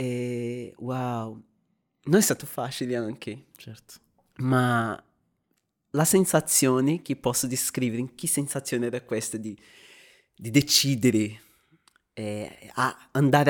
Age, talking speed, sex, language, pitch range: 20-39, 100 wpm, male, Italian, 120-150 Hz